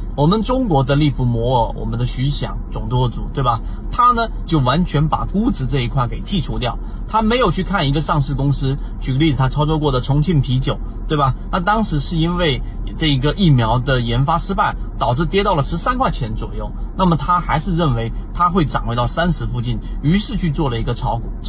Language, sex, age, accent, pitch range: Chinese, male, 30-49, native, 120-165 Hz